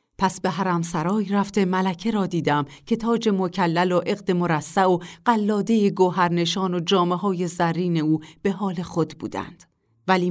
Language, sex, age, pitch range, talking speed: Persian, female, 40-59, 165-205 Hz, 155 wpm